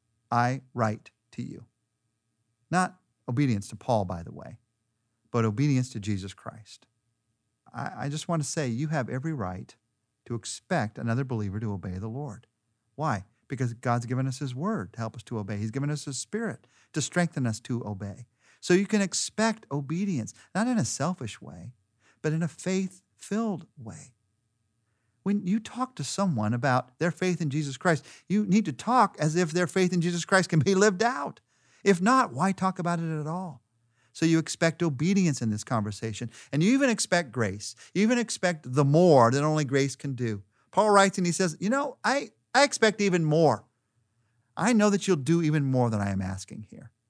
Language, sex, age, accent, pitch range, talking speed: English, male, 40-59, American, 115-180 Hz, 190 wpm